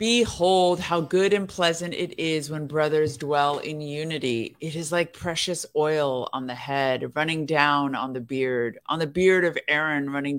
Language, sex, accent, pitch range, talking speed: English, female, American, 135-160 Hz, 180 wpm